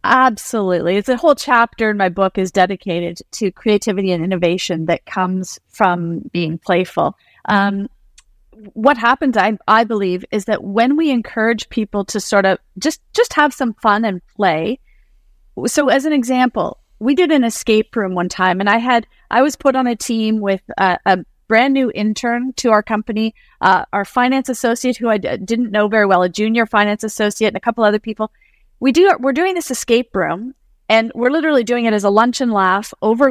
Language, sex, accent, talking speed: English, female, American, 195 wpm